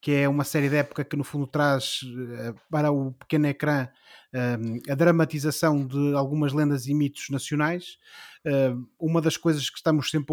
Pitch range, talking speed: 140-160 Hz, 165 wpm